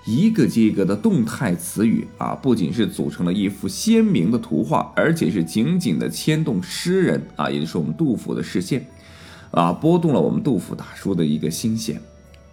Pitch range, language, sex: 115-190 Hz, Chinese, male